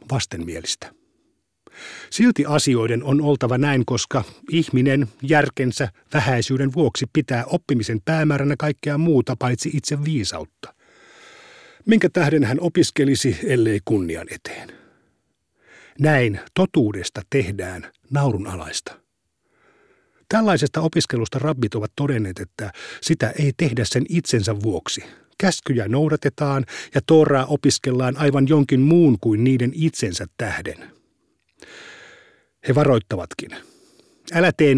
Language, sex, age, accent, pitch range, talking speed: Finnish, male, 50-69, native, 115-155 Hz, 100 wpm